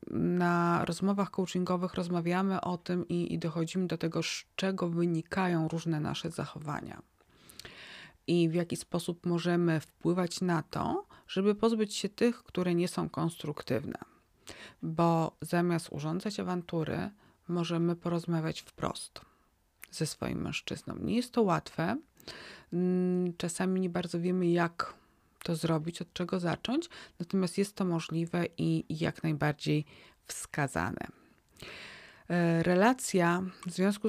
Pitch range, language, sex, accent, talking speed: 160-180 Hz, Polish, female, native, 120 wpm